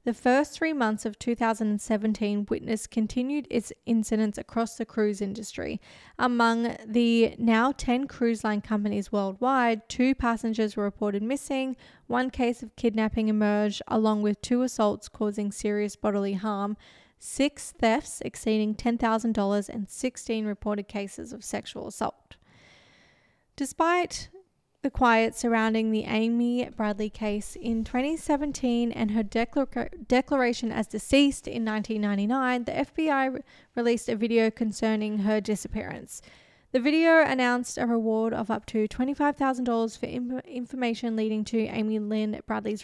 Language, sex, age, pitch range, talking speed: English, female, 20-39, 215-250 Hz, 130 wpm